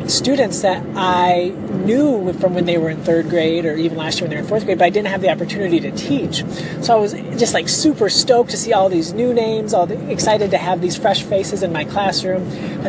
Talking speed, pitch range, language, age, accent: 245 wpm, 170-205 Hz, English, 30-49, American